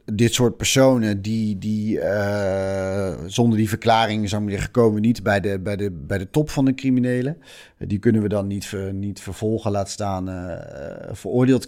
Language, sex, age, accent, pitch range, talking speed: Dutch, male, 40-59, Dutch, 105-125 Hz, 155 wpm